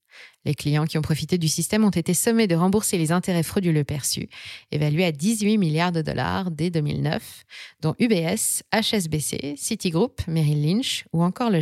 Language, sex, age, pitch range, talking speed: French, female, 20-39, 155-200 Hz, 170 wpm